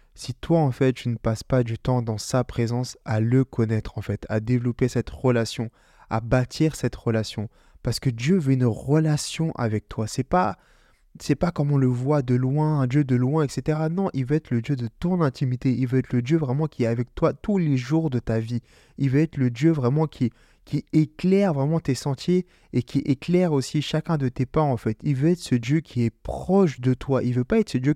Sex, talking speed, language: male, 245 wpm, French